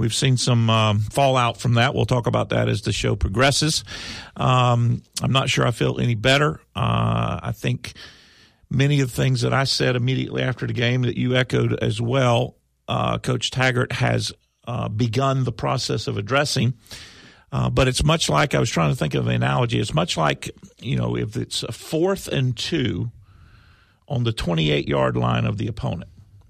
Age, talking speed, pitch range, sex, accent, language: 50-69, 190 wpm, 105-130 Hz, male, American, English